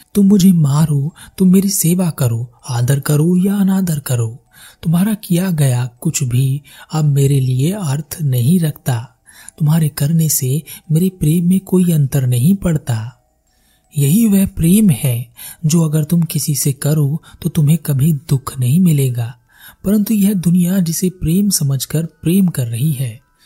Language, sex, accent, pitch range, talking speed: Hindi, male, native, 130-170 Hz, 150 wpm